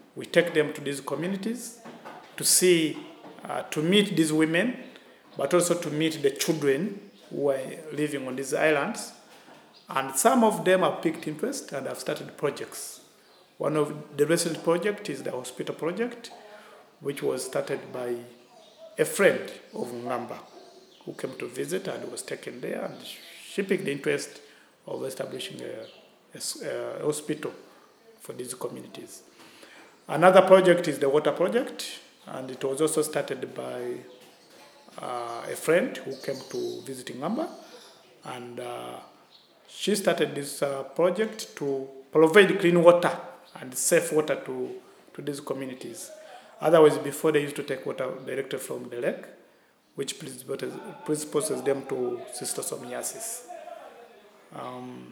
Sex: male